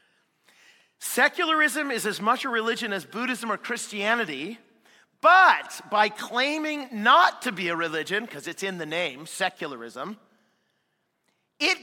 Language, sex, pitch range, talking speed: English, male, 155-245 Hz, 125 wpm